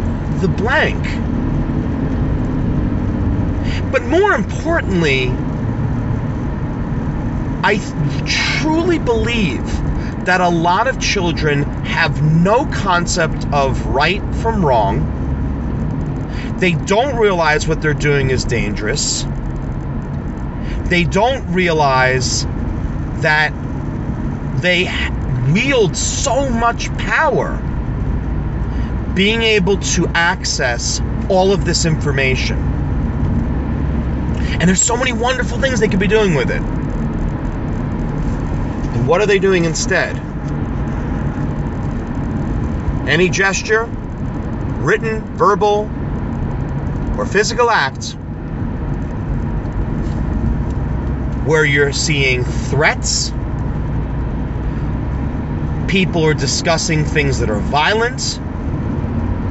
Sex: male